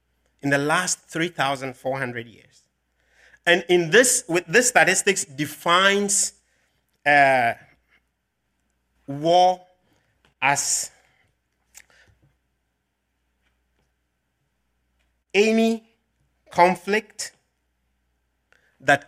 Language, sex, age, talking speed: English, male, 50-69, 55 wpm